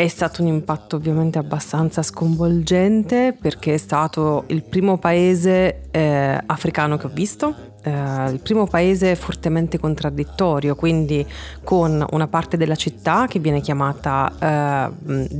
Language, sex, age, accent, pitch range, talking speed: Italian, female, 30-49, native, 140-170 Hz, 135 wpm